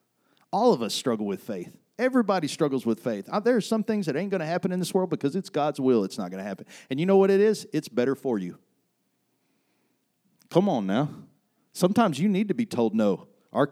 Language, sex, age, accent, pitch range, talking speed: English, male, 40-59, American, 120-180 Hz, 225 wpm